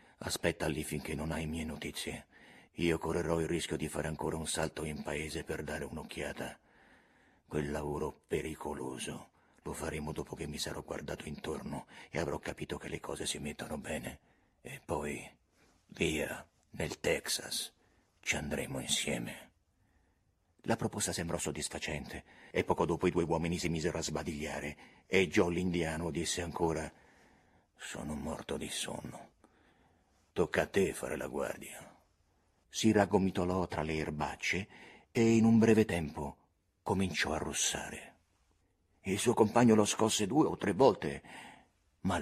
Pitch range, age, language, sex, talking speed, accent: 80-115 Hz, 50-69, Italian, male, 145 wpm, native